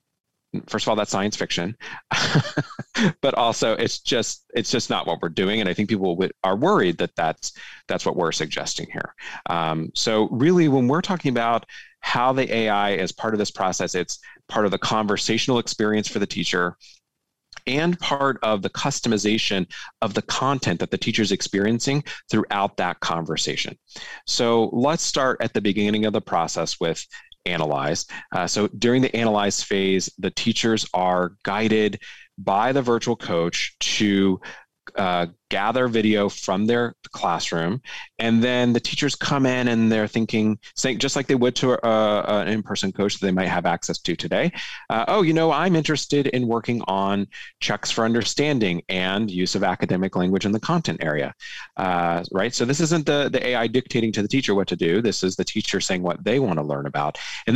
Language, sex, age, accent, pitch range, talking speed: English, male, 30-49, American, 100-125 Hz, 180 wpm